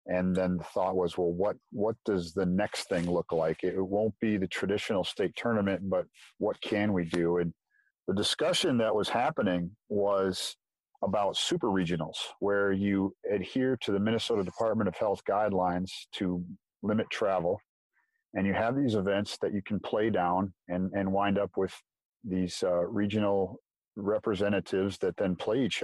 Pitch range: 90-110 Hz